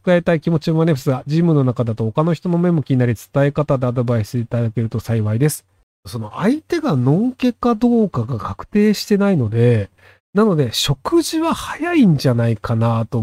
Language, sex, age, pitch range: Japanese, male, 40-59, 125-200 Hz